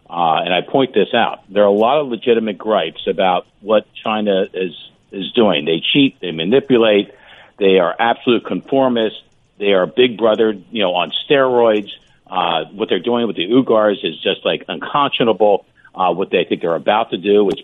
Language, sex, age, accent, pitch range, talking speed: English, male, 50-69, American, 100-125 Hz, 185 wpm